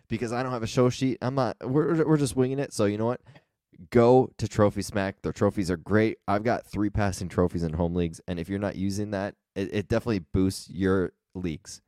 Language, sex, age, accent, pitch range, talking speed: English, male, 20-39, American, 95-115 Hz, 230 wpm